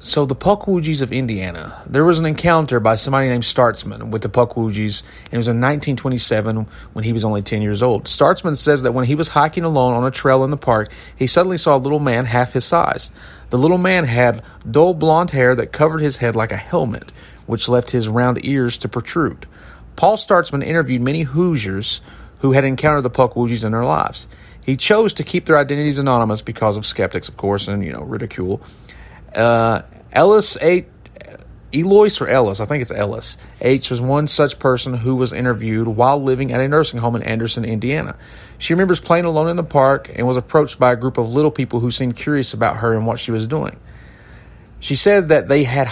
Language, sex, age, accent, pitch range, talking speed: English, male, 30-49, American, 120-150 Hz, 210 wpm